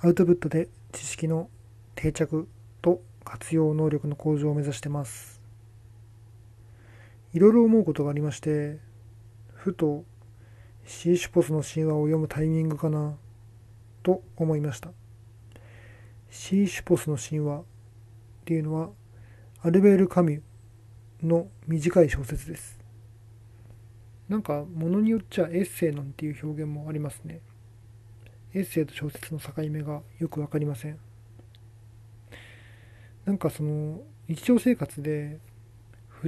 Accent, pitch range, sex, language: native, 110-155 Hz, male, Japanese